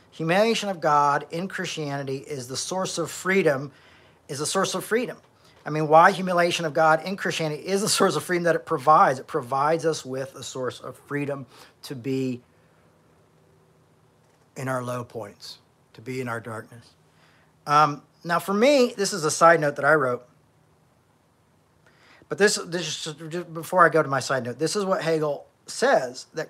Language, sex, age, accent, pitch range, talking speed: English, male, 40-59, American, 125-160 Hz, 180 wpm